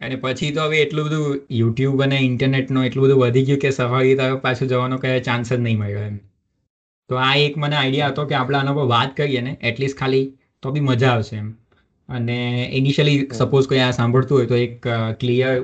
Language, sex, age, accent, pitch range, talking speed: Gujarati, male, 20-39, native, 120-140 Hz, 200 wpm